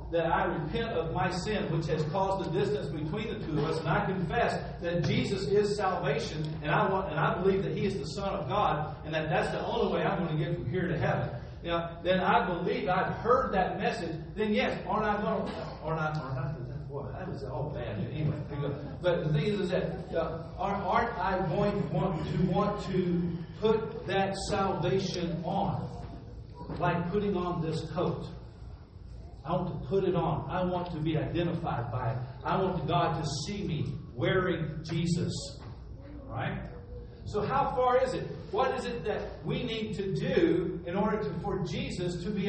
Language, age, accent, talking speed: English, 50-69, American, 205 wpm